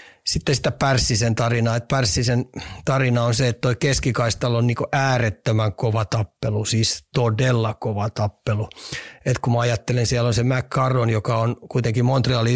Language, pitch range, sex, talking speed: Finnish, 115-130 Hz, male, 145 wpm